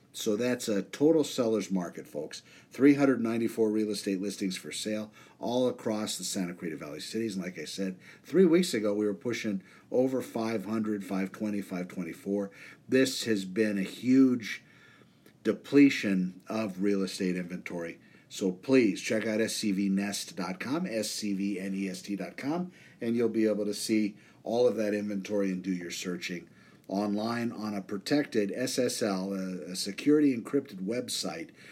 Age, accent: 50-69, American